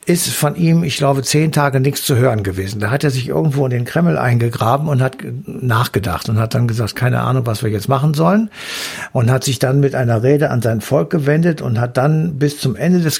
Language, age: German, 60-79